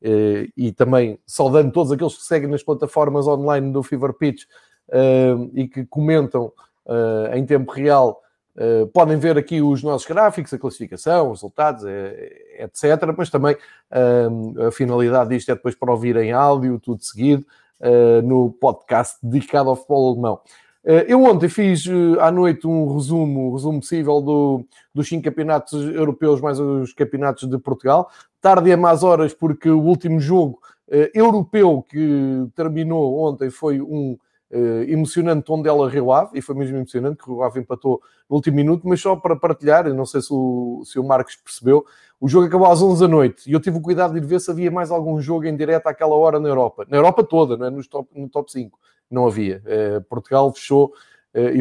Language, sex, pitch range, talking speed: Portuguese, male, 130-165 Hz, 185 wpm